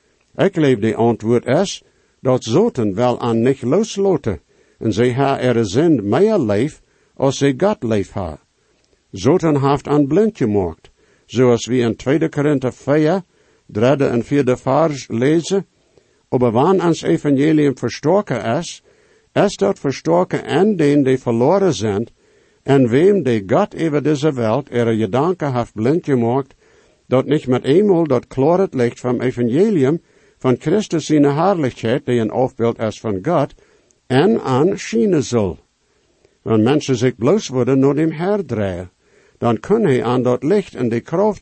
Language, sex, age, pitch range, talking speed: English, male, 60-79, 120-160 Hz, 150 wpm